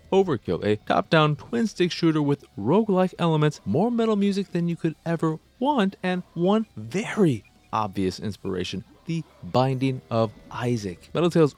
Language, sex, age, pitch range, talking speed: English, male, 30-49, 110-185 Hz, 150 wpm